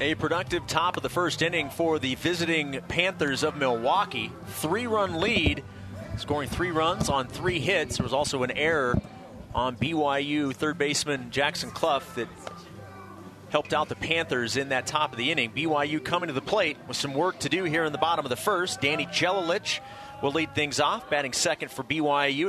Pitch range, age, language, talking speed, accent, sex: 130-160 Hz, 30-49, English, 185 wpm, American, male